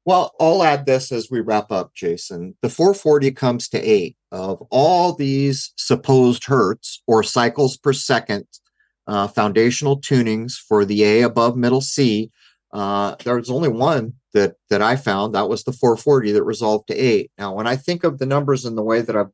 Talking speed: 190 wpm